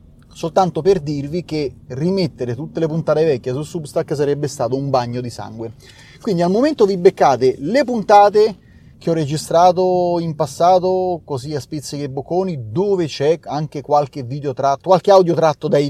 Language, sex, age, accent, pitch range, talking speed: Italian, male, 30-49, native, 140-190 Hz, 160 wpm